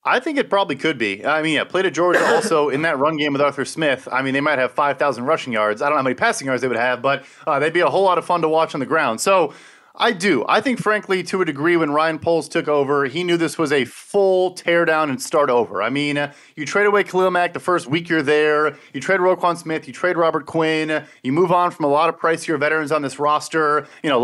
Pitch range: 150-180 Hz